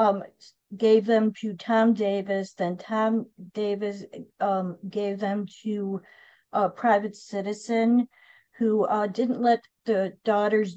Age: 50-69